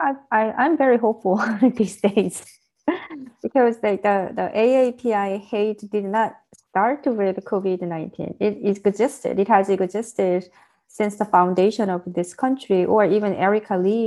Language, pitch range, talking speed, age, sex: English, 180-215 Hz, 135 wpm, 30-49, female